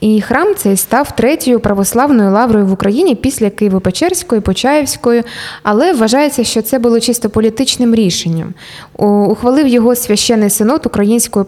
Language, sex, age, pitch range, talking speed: Ukrainian, female, 20-39, 200-245 Hz, 130 wpm